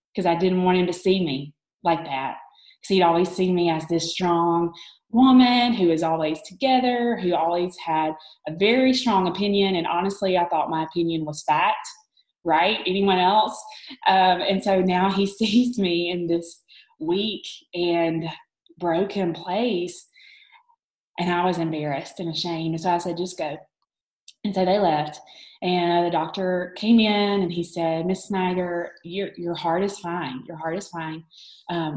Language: English